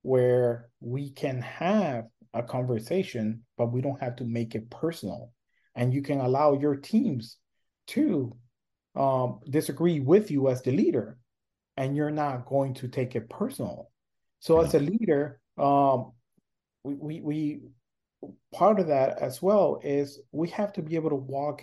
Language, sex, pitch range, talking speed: English, male, 125-165 Hz, 160 wpm